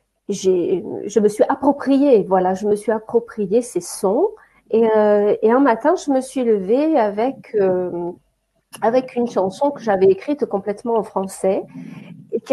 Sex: female